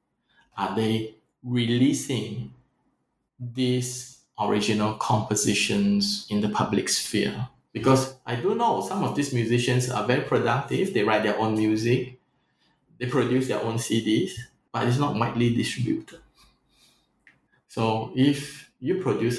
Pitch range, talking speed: 105-125 Hz, 125 wpm